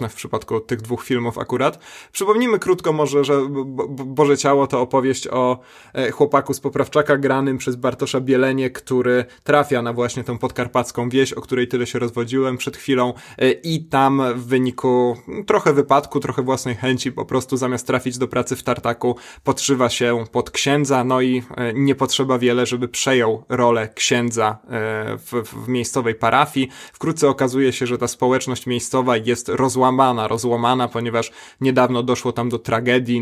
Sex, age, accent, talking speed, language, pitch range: male, 20-39, native, 155 wpm, Polish, 120-135 Hz